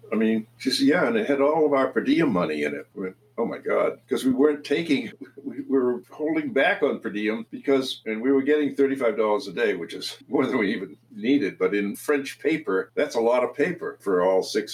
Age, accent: 60-79, American